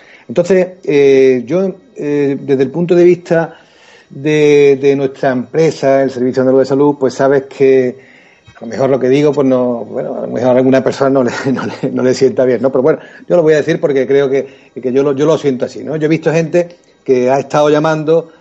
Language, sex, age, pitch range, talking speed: Spanish, male, 40-59, 130-160 Hz, 230 wpm